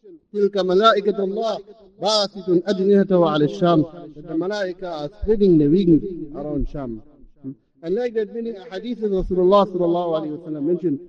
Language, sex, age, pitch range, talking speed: English, male, 50-69, 170-205 Hz, 95 wpm